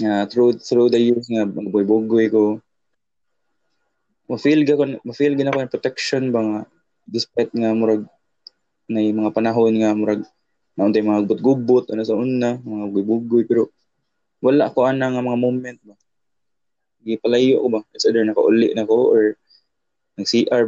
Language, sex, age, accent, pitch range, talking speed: Filipino, male, 20-39, native, 110-125 Hz, 140 wpm